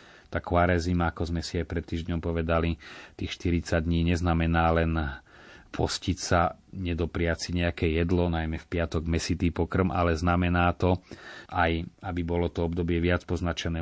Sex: male